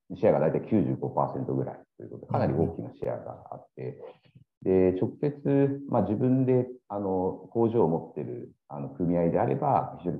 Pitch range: 75-120 Hz